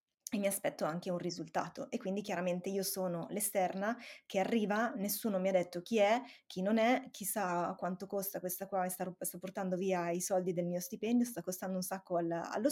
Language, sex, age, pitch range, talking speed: Italian, female, 20-39, 185-225 Hz, 200 wpm